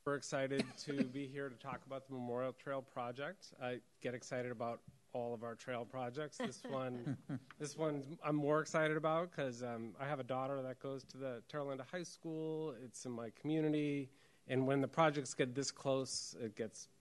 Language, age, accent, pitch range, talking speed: English, 30-49, American, 120-145 Hz, 200 wpm